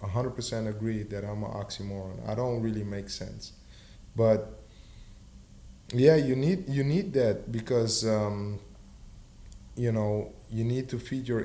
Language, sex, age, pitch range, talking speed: English, male, 20-39, 100-125 Hz, 145 wpm